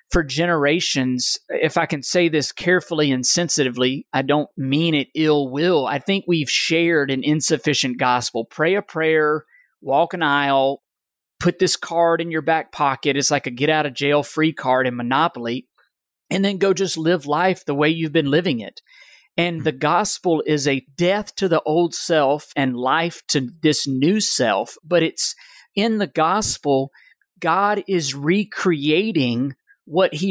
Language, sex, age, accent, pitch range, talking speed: English, male, 40-59, American, 140-175 Hz, 170 wpm